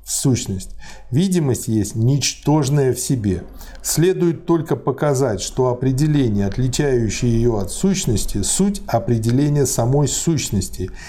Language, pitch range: Russian, 105-140 Hz